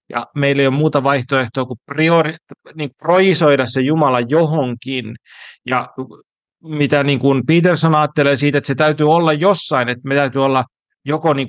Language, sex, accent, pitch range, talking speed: Finnish, male, native, 130-155 Hz, 155 wpm